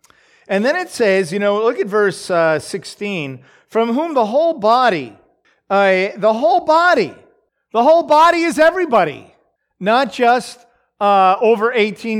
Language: English